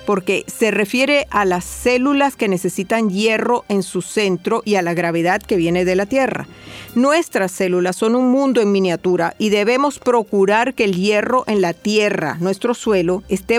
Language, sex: Spanish, female